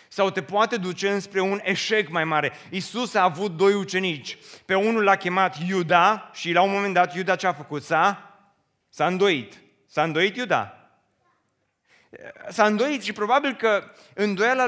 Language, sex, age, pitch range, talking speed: Romanian, male, 30-49, 180-230 Hz, 165 wpm